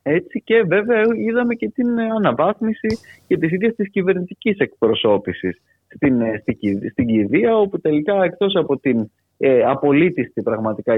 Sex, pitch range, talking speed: male, 110-180 Hz, 130 wpm